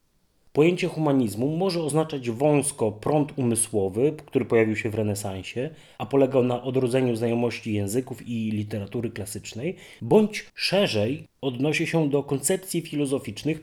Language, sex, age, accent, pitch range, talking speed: Polish, male, 30-49, native, 115-155 Hz, 125 wpm